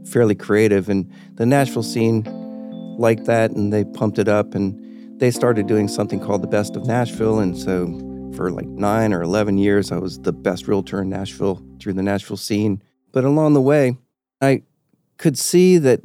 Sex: male